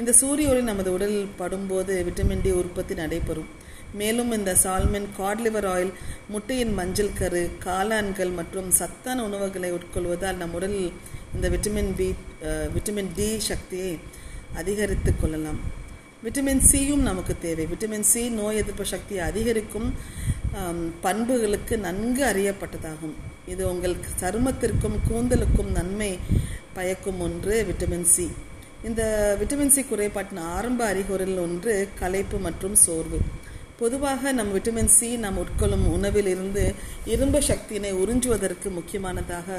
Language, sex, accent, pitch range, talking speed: Tamil, female, native, 175-215 Hz, 115 wpm